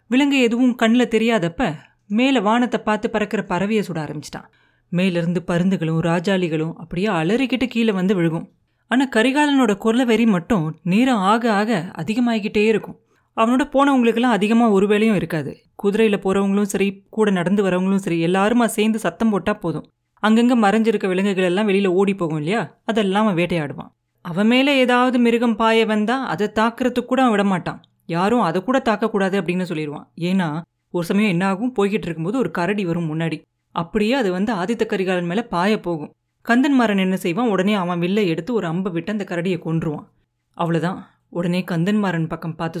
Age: 30-49